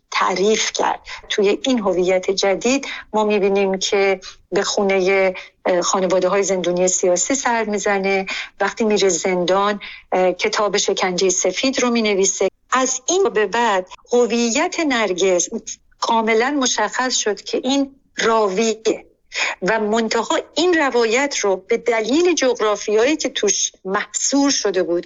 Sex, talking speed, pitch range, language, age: female, 120 wpm, 195-255 Hz, Persian, 50-69